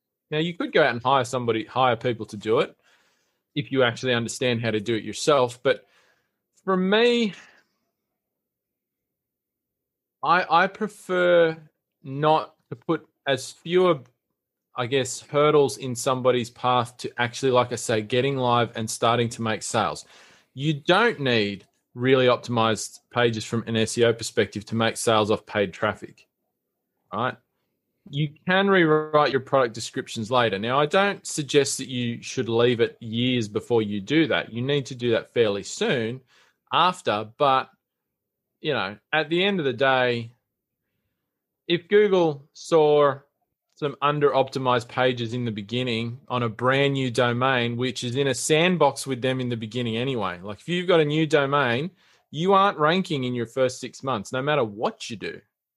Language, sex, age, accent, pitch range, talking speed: English, male, 20-39, Australian, 120-150 Hz, 160 wpm